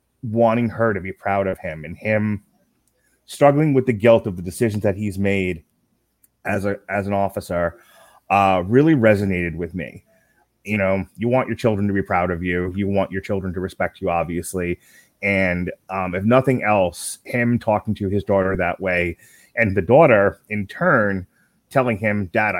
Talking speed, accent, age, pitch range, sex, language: 180 wpm, American, 30-49, 95-120 Hz, male, English